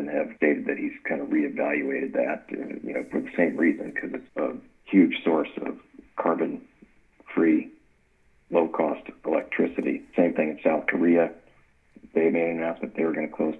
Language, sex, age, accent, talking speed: English, male, 50-69, American, 165 wpm